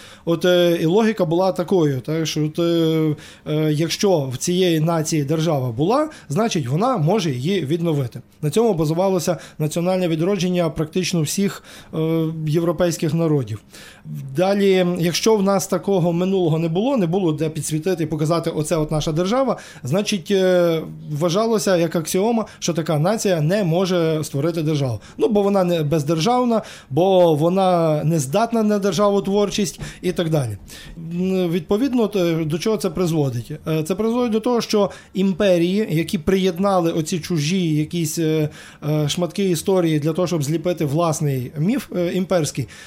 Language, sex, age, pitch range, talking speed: Ukrainian, male, 20-39, 155-190 Hz, 140 wpm